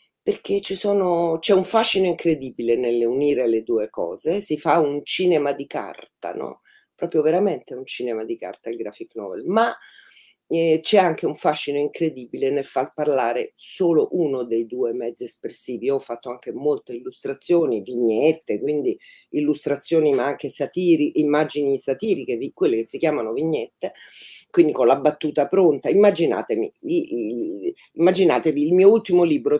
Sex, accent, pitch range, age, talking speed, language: female, native, 145-205 Hz, 50-69, 150 wpm, Italian